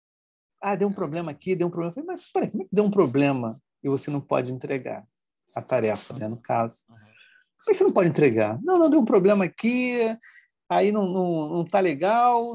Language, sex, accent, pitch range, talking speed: Portuguese, male, Brazilian, 150-210 Hz, 215 wpm